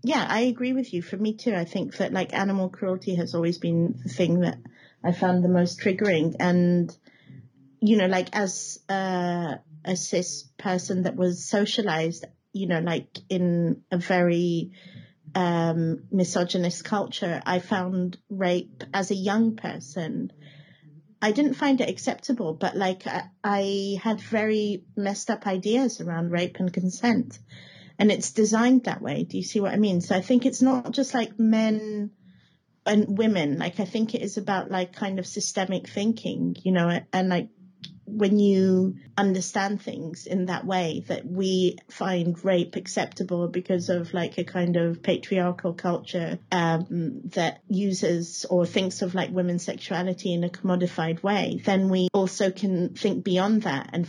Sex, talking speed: female, 165 wpm